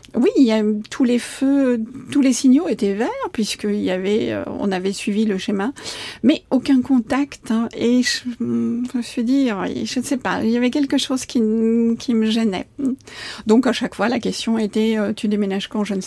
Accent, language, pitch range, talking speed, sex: French, French, 215-265 Hz, 200 wpm, female